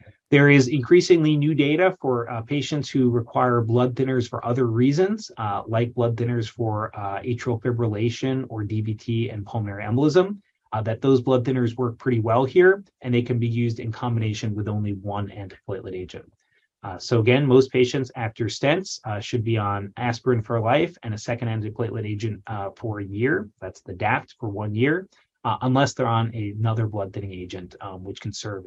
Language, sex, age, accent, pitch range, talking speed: English, male, 30-49, American, 105-130 Hz, 190 wpm